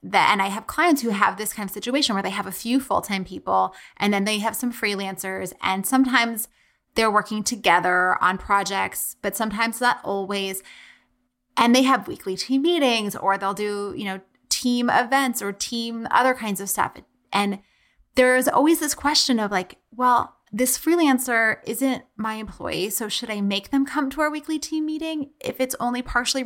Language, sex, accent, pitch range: English, female, American, 195-245 Hz